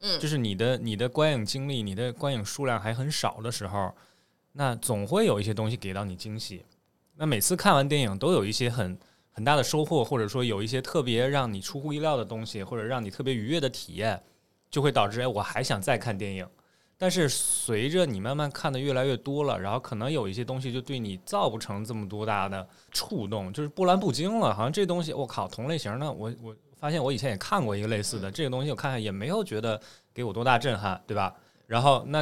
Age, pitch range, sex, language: 20-39, 110-150 Hz, male, Chinese